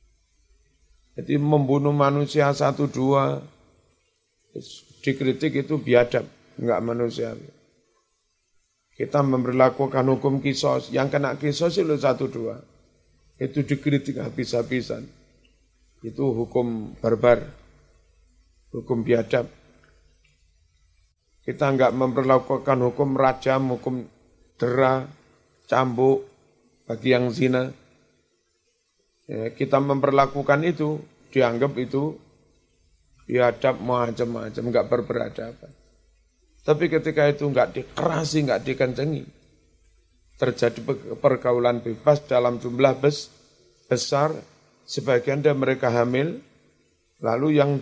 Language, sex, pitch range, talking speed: Indonesian, male, 115-140 Hz, 80 wpm